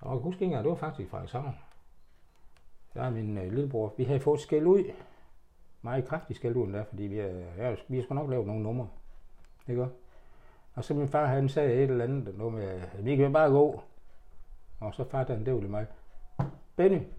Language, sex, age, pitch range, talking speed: Danish, male, 60-79, 105-145 Hz, 190 wpm